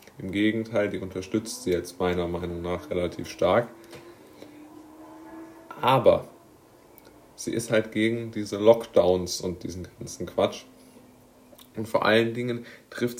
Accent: German